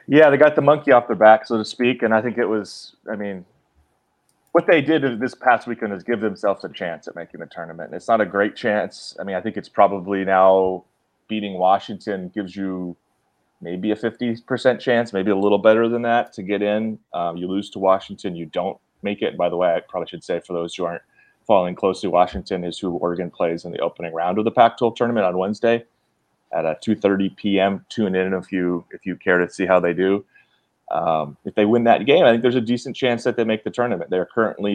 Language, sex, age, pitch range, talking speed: English, male, 30-49, 95-115 Hz, 235 wpm